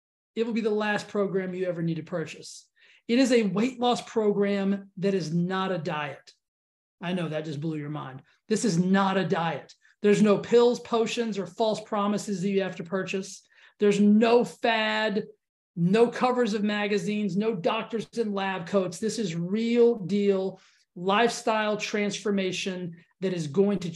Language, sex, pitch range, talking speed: English, male, 185-225 Hz, 170 wpm